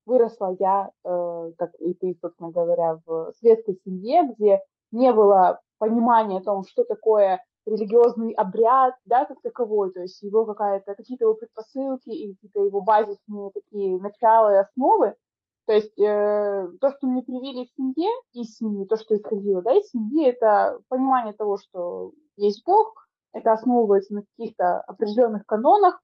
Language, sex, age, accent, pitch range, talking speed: Russian, female, 20-39, native, 200-255 Hz, 155 wpm